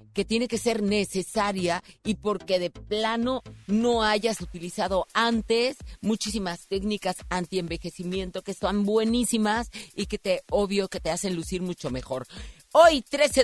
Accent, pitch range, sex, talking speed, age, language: Mexican, 175-225 Hz, female, 145 wpm, 40-59, Spanish